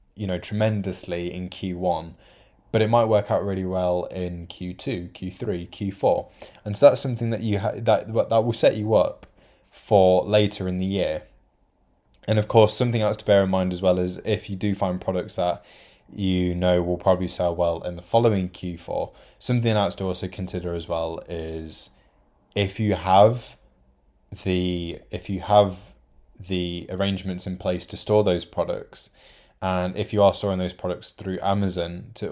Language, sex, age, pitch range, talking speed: English, male, 20-39, 85-105 Hz, 175 wpm